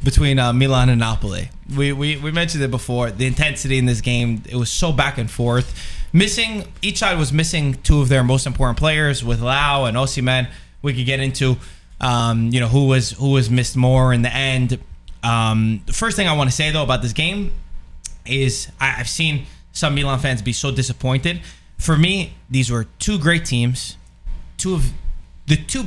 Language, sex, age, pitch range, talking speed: English, male, 20-39, 120-160 Hz, 195 wpm